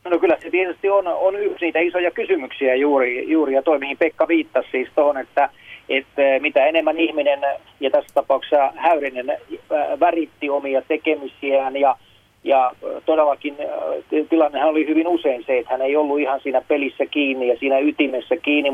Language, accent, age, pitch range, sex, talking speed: Finnish, native, 40-59, 130-155 Hz, male, 160 wpm